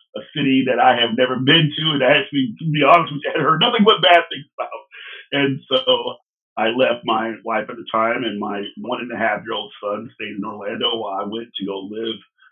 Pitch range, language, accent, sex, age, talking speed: 120-170 Hz, English, American, male, 40-59, 245 wpm